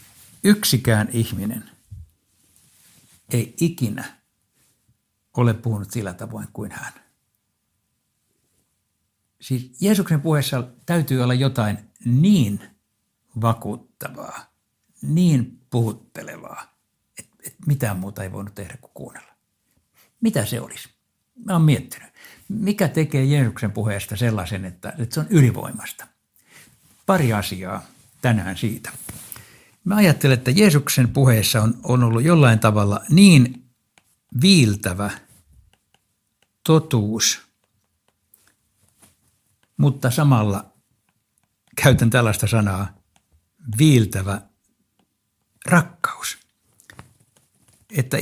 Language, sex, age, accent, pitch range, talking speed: Finnish, male, 60-79, native, 105-140 Hz, 80 wpm